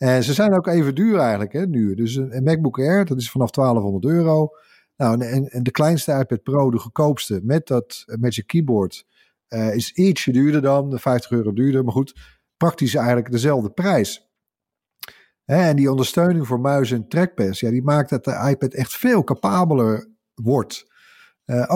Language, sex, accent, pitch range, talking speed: Dutch, male, Dutch, 115-145 Hz, 175 wpm